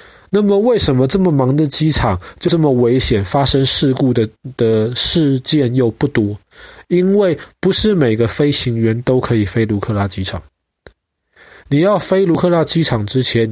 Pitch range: 110-150 Hz